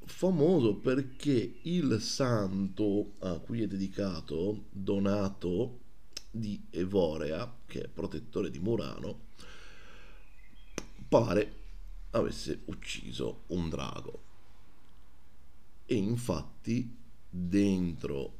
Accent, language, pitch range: native, Italian, 95-120 Hz